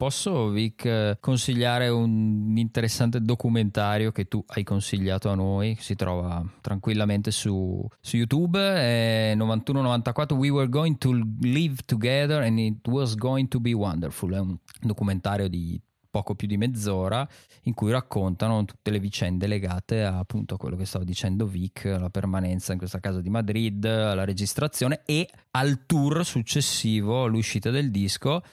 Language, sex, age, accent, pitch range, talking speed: Italian, male, 20-39, native, 100-125 Hz, 150 wpm